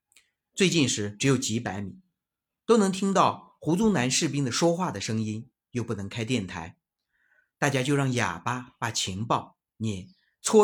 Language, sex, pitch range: Chinese, male, 105-165 Hz